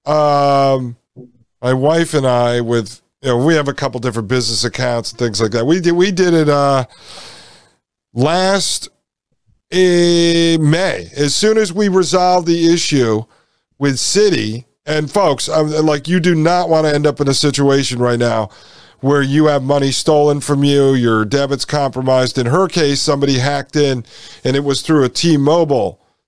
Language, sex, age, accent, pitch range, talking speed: English, male, 50-69, American, 130-160 Hz, 170 wpm